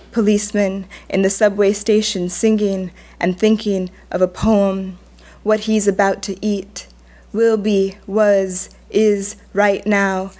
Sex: female